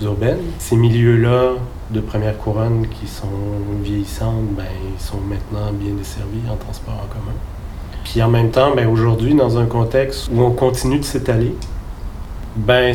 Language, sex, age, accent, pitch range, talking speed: French, male, 40-59, French, 100-120 Hz, 160 wpm